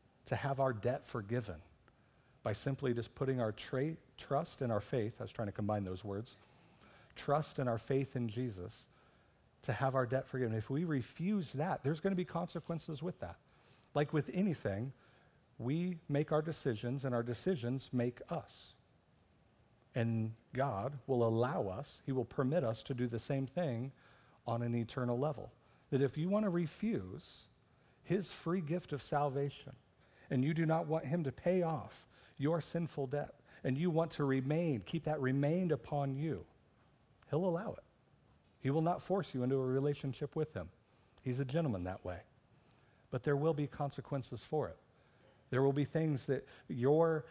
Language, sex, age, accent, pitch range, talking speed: English, male, 50-69, American, 120-150 Hz, 170 wpm